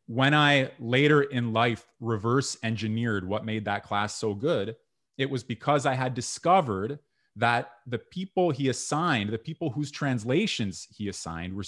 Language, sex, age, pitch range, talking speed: English, male, 30-49, 110-135 Hz, 160 wpm